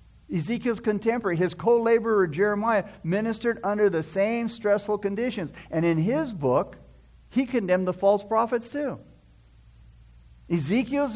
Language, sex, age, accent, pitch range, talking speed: English, male, 60-79, American, 130-205 Hz, 120 wpm